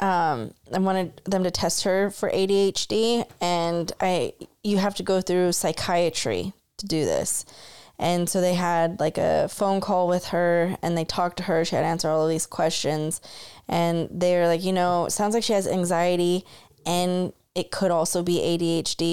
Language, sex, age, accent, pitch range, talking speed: English, female, 20-39, American, 170-190 Hz, 190 wpm